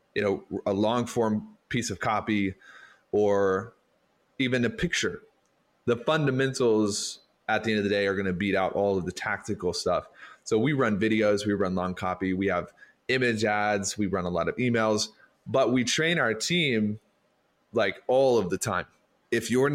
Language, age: English, 20-39